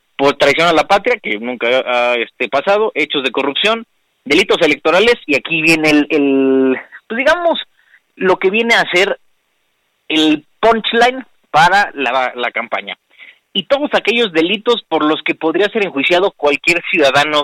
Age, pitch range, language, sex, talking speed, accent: 30-49, 145-205 Hz, Spanish, male, 155 wpm, Mexican